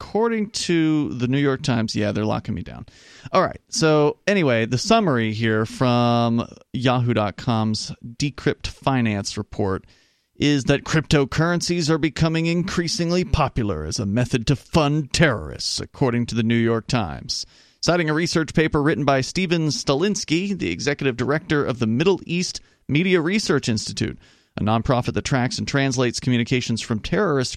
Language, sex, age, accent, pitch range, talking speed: English, male, 30-49, American, 115-165 Hz, 150 wpm